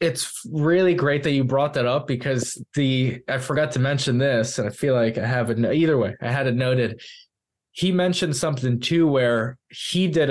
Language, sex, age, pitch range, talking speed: English, male, 20-39, 115-135 Hz, 200 wpm